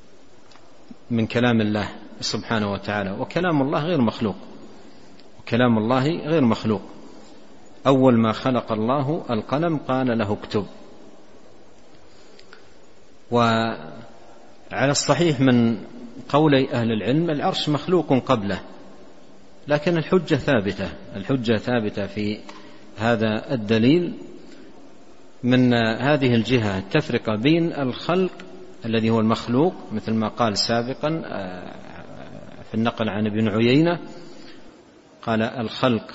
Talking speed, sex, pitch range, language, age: 95 wpm, male, 110-145 Hz, Arabic, 50-69